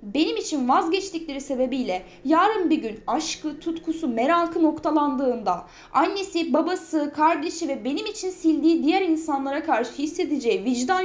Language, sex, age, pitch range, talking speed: Turkish, female, 10-29, 275-350 Hz, 125 wpm